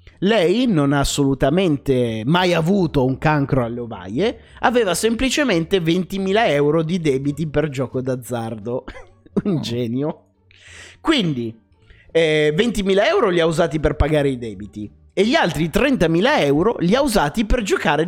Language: Italian